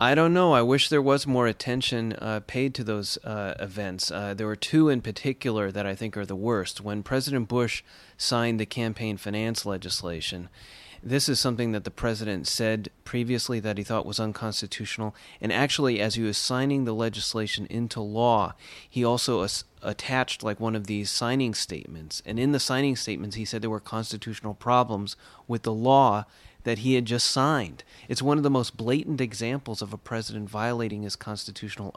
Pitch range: 105-125 Hz